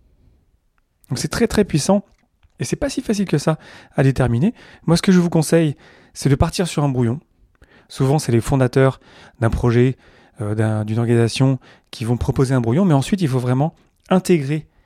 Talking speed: 185 wpm